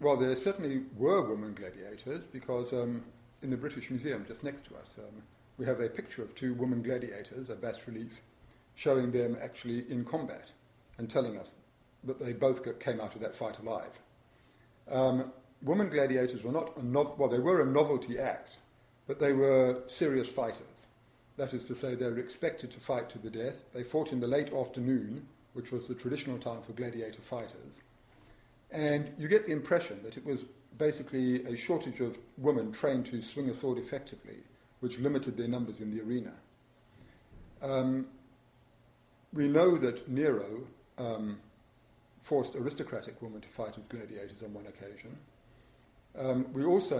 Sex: male